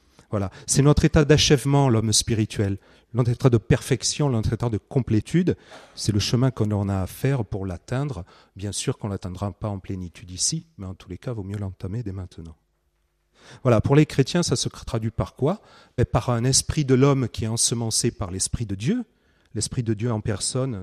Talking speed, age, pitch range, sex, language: 205 wpm, 40-59, 100-130 Hz, male, French